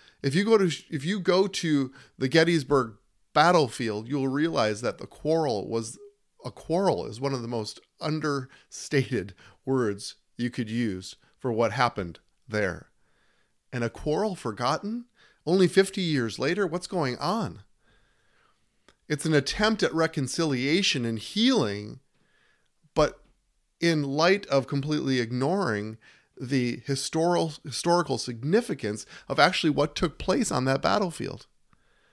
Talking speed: 130 wpm